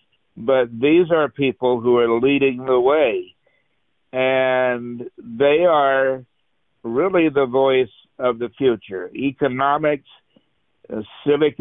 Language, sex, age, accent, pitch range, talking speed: English, male, 60-79, American, 120-145 Hz, 105 wpm